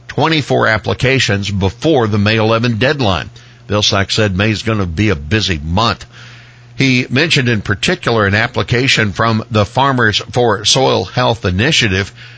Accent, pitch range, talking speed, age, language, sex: American, 100-125 Hz, 145 wpm, 60-79, English, male